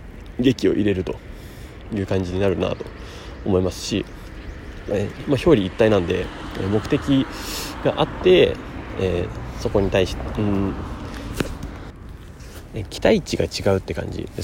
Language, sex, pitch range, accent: Japanese, male, 95-135 Hz, native